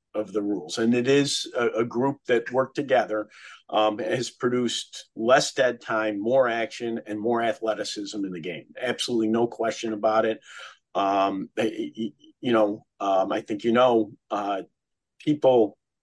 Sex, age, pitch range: male, 50-69, 110-130 Hz